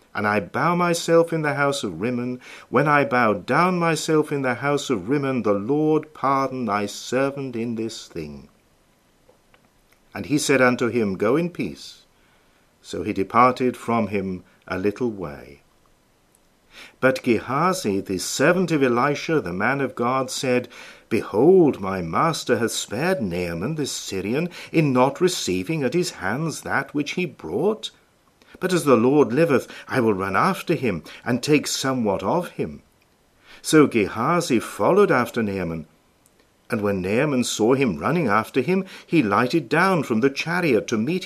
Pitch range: 115-165 Hz